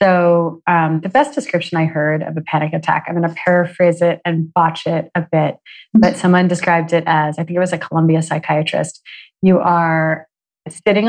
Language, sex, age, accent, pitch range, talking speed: English, female, 30-49, American, 165-195 Hz, 195 wpm